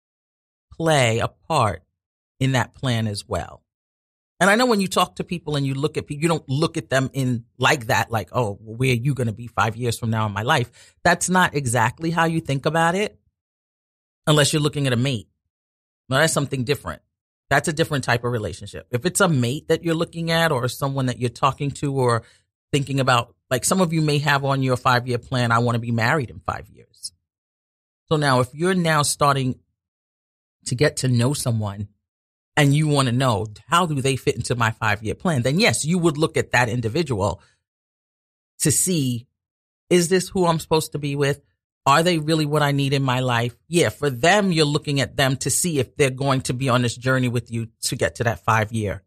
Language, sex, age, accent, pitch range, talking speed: English, male, 40-59, American, 110-155 Hz, 220 wpm